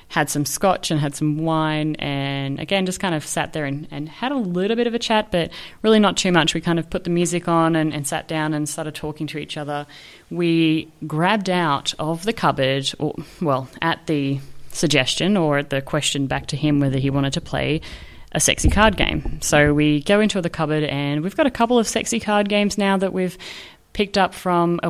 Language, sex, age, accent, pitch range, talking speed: English, female, 30-49, Australian, 150-185 Hz, 225 wpm